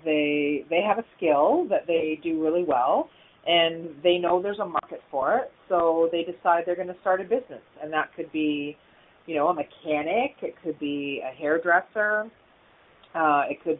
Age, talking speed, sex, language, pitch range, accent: 30-49, 185 wpm, female, English, 165-210 Hz, American